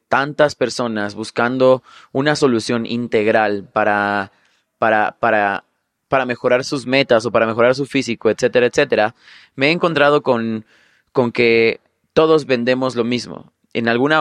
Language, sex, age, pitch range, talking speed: Spanish, male, 20-39, 115-145 Hz, 135 wpm